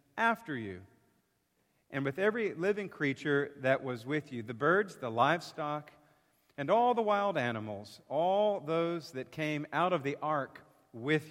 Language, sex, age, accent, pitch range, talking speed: English, male, 50-69, American, 120-175 Hz, 155 wpm